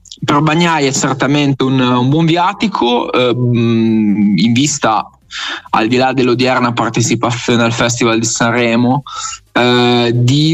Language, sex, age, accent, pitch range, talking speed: Italian, male, 20-39, native, 120-145 Hz, 125 wpm